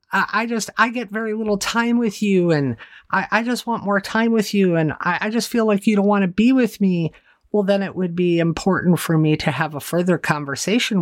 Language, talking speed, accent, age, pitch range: English, 240 wpm, American, 50-69, 150-210 Hz